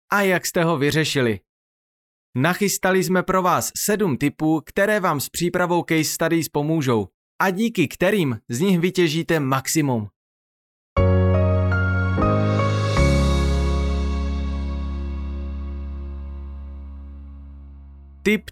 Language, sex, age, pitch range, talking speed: Czech, male, 30-49, 120-180 Hz, 85 wpm